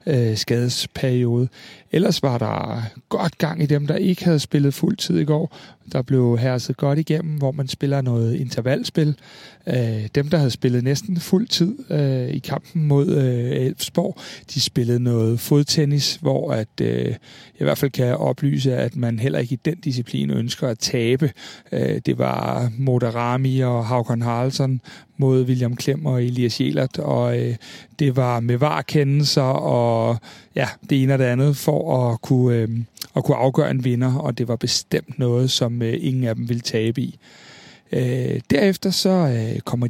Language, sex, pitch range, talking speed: Danish, male, 120-150 Hz, 165 wpm